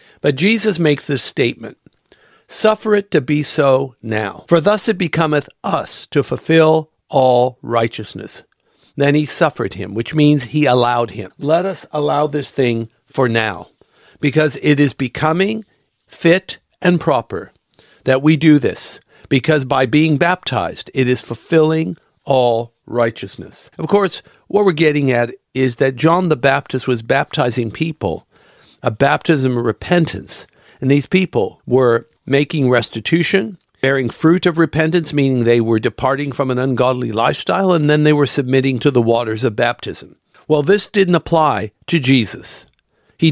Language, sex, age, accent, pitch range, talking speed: English, male, 50-69, American, 125-160 Hz, 150 wpm